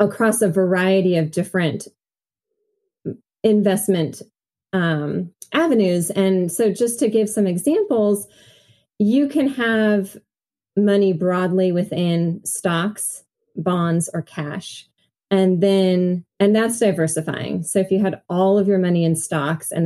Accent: American